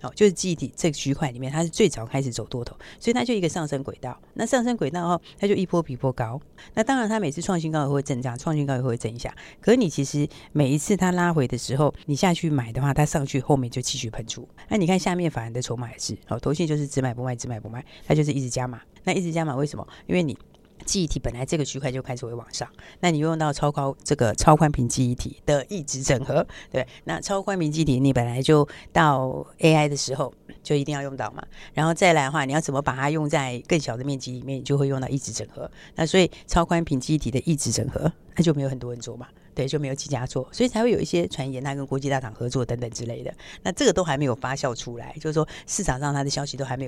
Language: Chinese